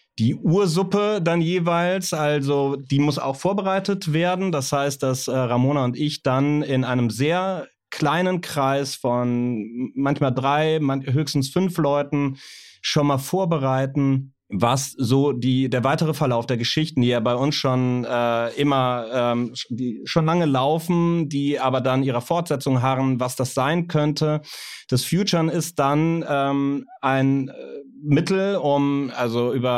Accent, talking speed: German, 145 wpm